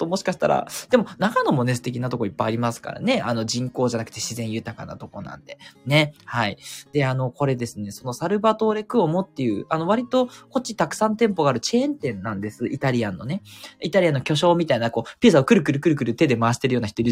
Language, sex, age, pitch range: Japanese, male, 20-39, 115-190 Hz